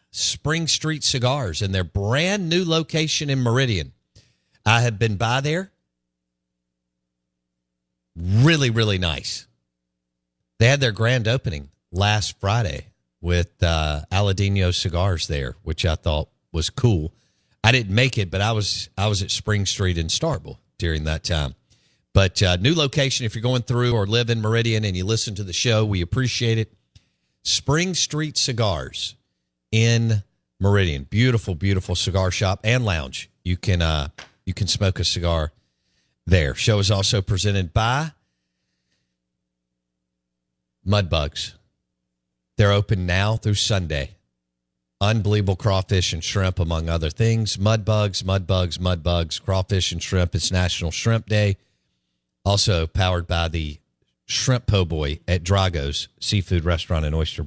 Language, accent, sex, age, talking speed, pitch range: English, American, male, 50-69, 145 wpm, 80-115 Hz